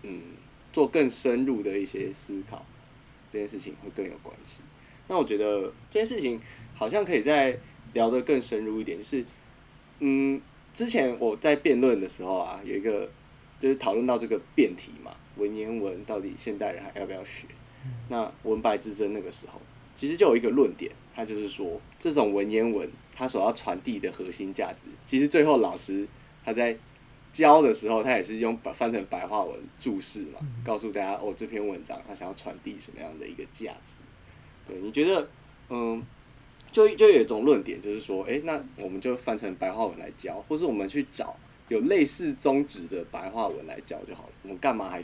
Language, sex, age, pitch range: Chinese, male, 20-39, 110-140 Hz